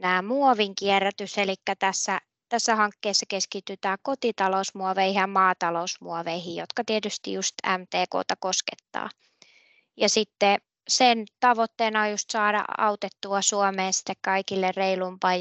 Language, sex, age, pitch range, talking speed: Finnish, female, 20-39, 190-215 Hz, 105 wpm